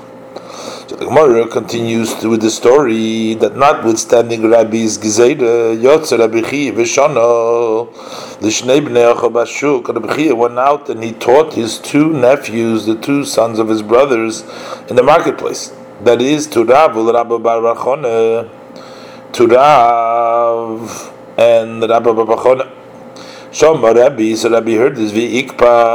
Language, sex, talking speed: English, male, 125 wpm